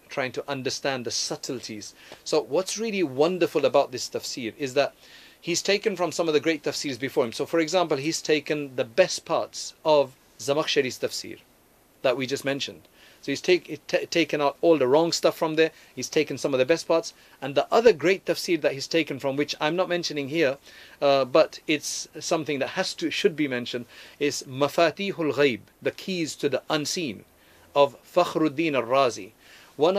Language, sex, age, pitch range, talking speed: English, male, 40-59, 130-165 Hz, 190 wpm